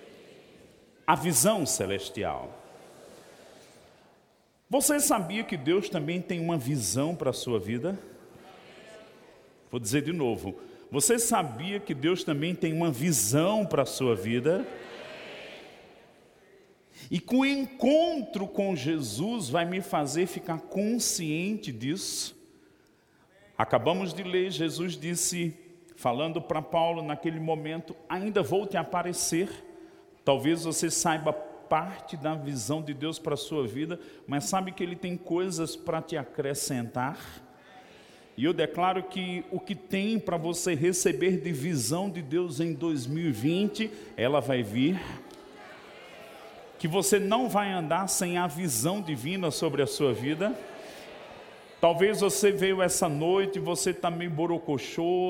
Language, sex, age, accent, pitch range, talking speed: Portuguese, male, 40-59, Brazilian, 155-190 Hz, 130 wpm